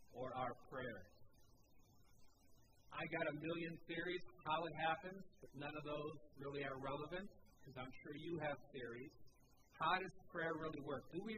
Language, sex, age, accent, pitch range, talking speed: English, male, 50-69, American, 125-155 Hz, 170 wpm